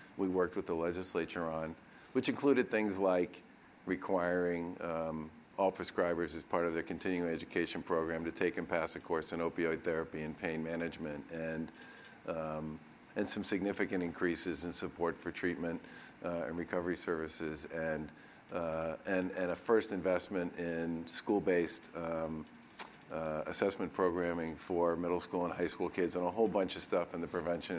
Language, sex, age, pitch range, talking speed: English, male, 50-69, 80-90 Hz, 155 wpm